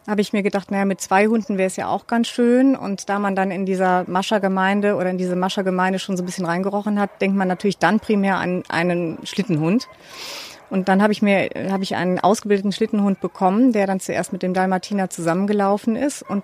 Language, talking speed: German, 210 wpm